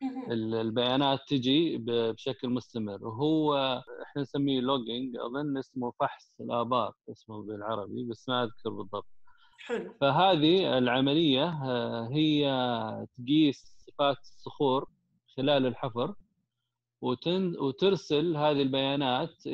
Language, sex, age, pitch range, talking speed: Arabic, male, 20-39, 120-145 Hz, 90 wpm